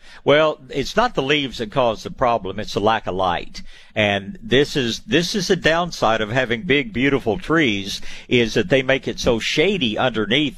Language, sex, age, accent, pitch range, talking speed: English, male, 60-79, American, 105-140 Hz, 195 wpm